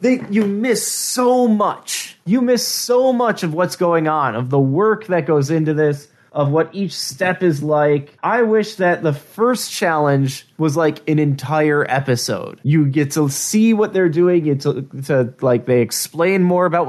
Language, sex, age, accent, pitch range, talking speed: English, male, 20-39, American, 155-220 Hz, 190 wpm